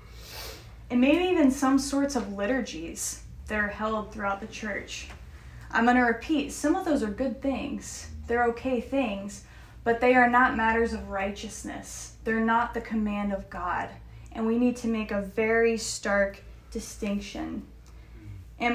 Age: 20-39